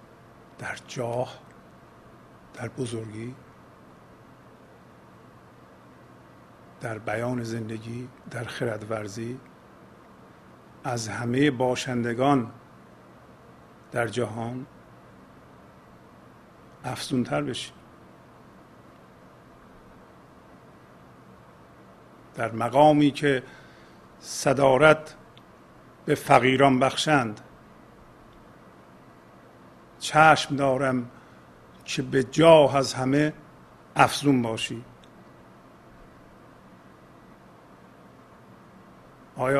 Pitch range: 110-140 Hz